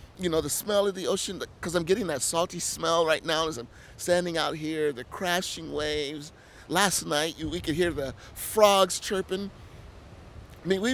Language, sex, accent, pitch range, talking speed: English, male, American, 135-170 Hz, 185 wpm